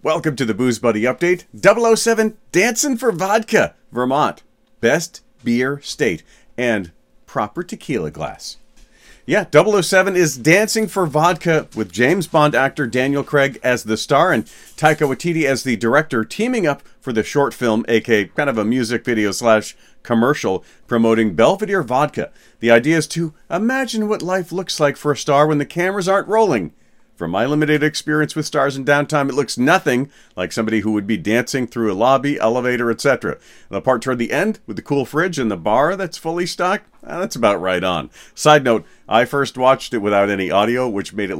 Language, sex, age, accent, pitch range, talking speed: English, male, 40-59, American, 115-175 Hz, 185 wpm